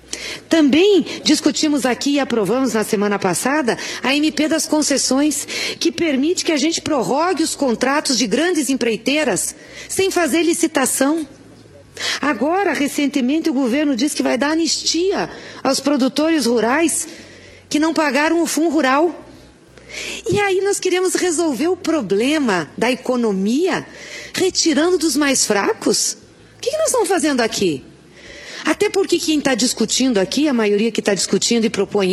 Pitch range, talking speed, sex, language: 205-310 Hz, 140 wpm, female, English